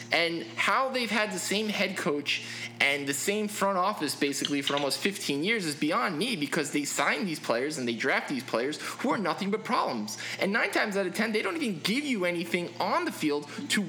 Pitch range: 145-205 Hz